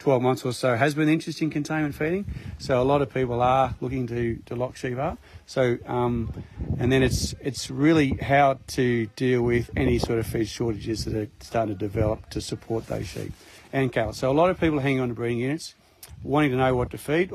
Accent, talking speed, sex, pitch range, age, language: Australian, 230 wpm, male, 115-135 Hz, 40-59, English